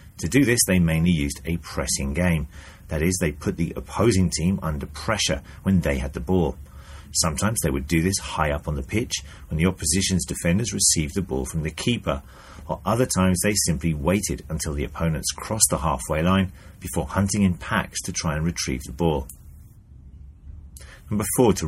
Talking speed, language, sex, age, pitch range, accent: 190 wpm, English, male, 30-49, 75-95 Hz, British